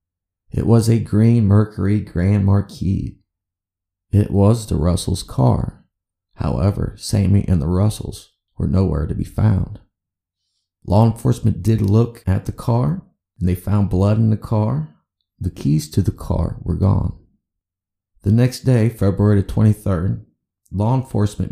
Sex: male